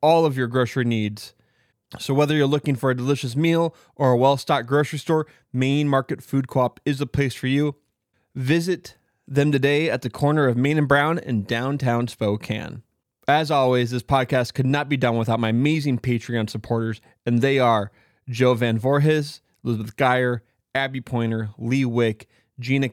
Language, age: English, 20-39